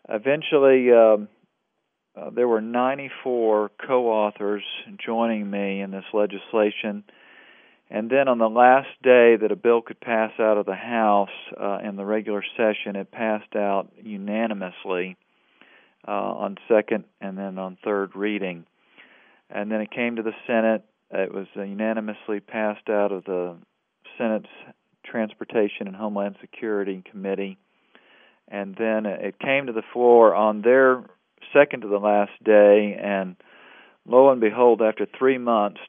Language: English